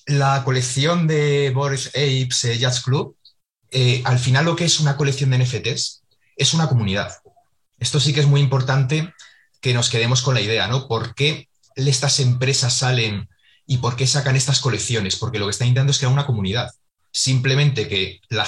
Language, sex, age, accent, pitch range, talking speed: Spanish, male, 30-49, Spanish, 115-140 Hz, 185 wpm